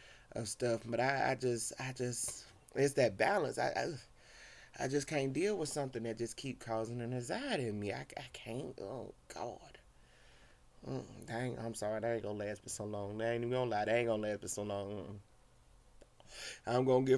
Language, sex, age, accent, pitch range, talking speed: English, male, 30-49, American, 115-140 Hz, 205 wpm